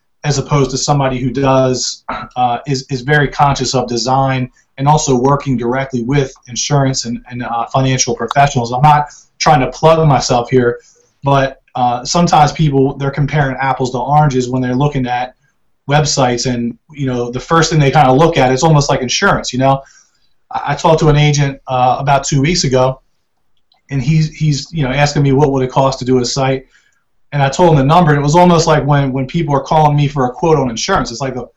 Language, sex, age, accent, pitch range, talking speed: English, male, 30-49, American, 130-150 Hz, 215 wpm